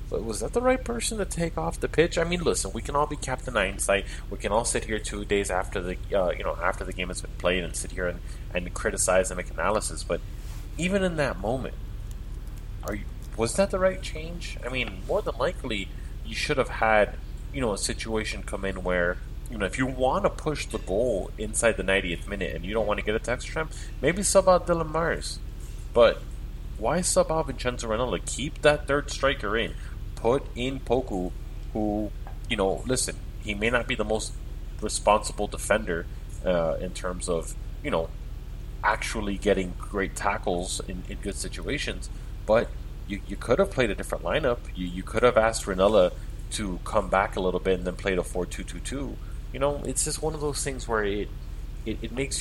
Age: 30-49